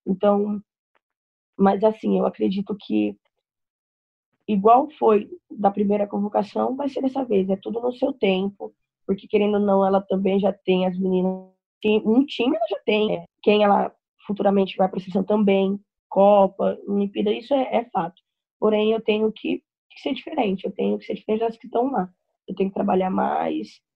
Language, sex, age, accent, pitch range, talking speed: Portuguese, female, 20-39, Brazilian, 195-225 Hz, 175 wpm